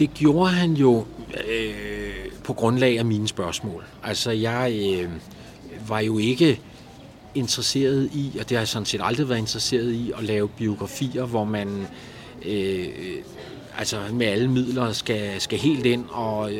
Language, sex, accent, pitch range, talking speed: Danish, male, native, 105-125 Hz, 155 wpm